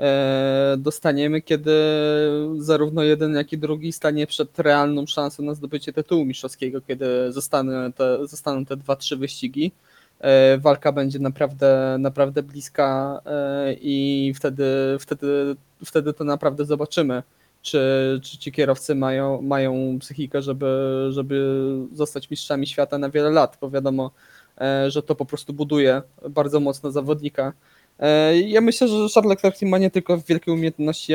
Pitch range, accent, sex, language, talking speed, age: 135-155 Hz, native, male, Polish, 130 wpm, 20-39